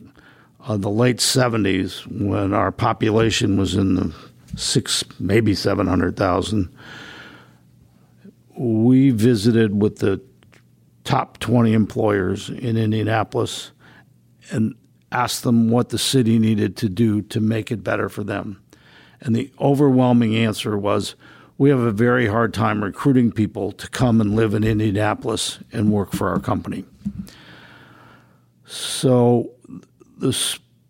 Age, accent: 50-69, American